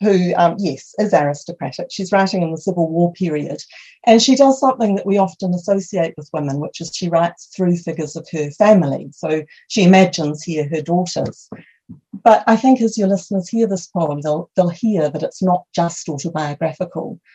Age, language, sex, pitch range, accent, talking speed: 50-69, English, female, 155-195 Hz, British, 185 wpm